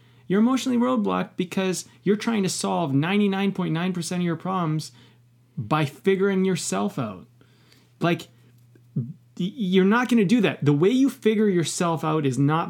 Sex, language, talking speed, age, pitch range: male, English, 145 wpm, 30-49, 130-180 Hz